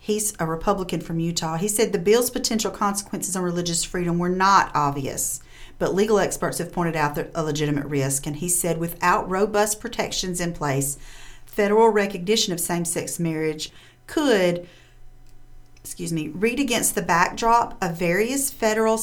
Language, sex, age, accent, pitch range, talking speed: English, female, 40-59, American, 140-200 Hz, 160 wpm